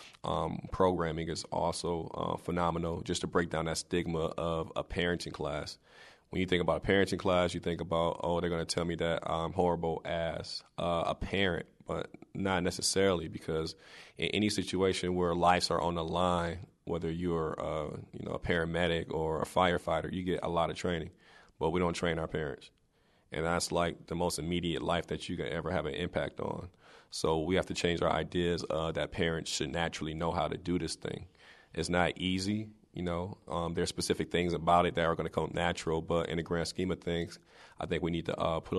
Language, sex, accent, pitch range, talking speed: English, male, American, 80-90 Hz, 215 wpm